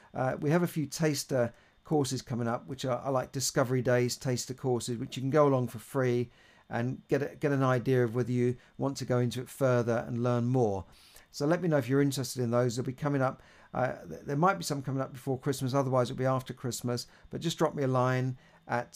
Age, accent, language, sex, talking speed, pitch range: 50-69, British, English, male, 235 wpm, 120-145 Hz